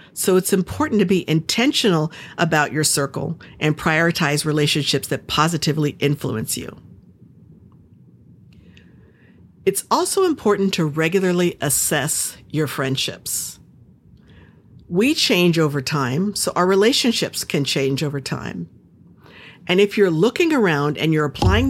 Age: 50-69